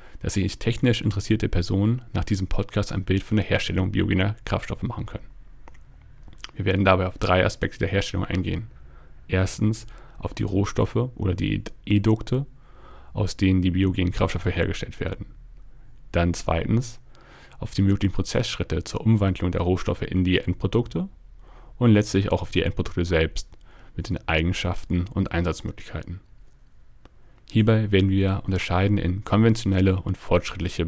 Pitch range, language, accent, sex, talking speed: 90-110 Hz, English, German, male, 140 wpm